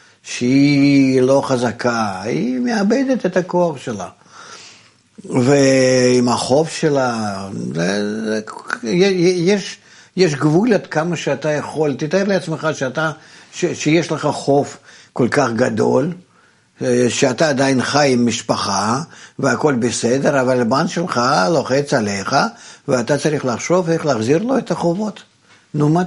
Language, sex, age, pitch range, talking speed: Hebrew, male, 60-79, 125-180 Hz, 115 wpm